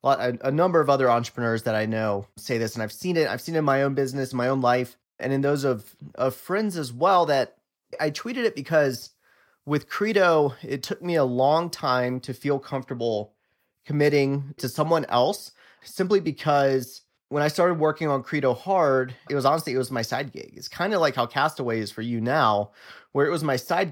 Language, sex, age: English, male, 30-49